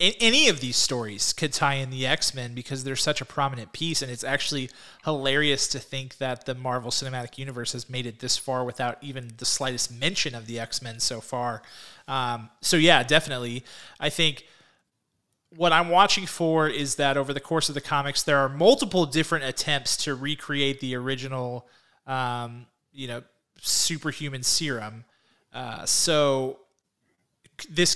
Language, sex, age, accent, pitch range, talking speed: English, male, 30-49, American, 125-150 Hz, 165 wpm